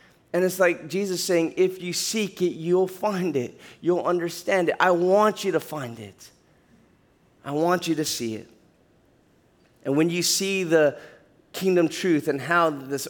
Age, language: 20-39, English